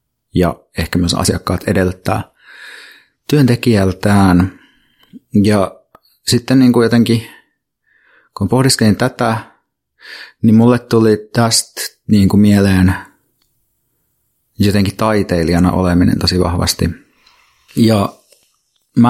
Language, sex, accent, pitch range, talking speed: Finnish, male, native, 95-110 Hz, 90 wpm